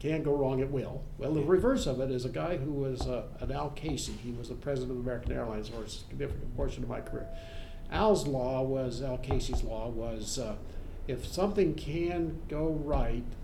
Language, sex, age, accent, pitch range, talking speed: English, male, 50-69, American, 115-160 Hz, 205 wpm